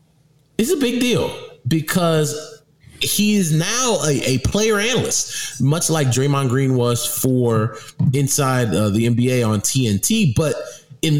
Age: 20-39